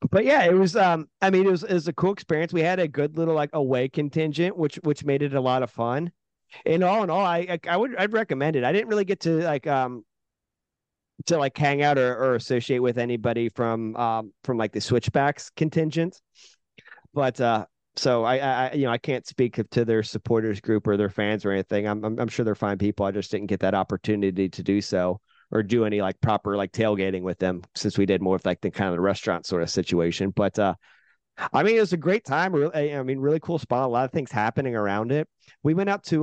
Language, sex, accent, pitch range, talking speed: English, male, American, 105-150 Hz, 240 wpm